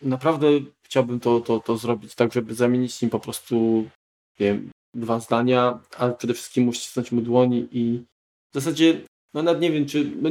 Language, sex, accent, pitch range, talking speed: Polish, male, native, 120-145 Hz, 175 wpm